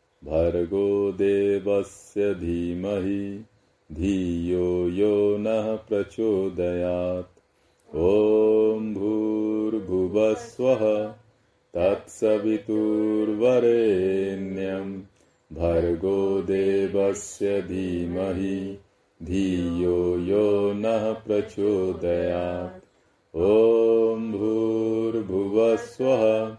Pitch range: 95-110 Hz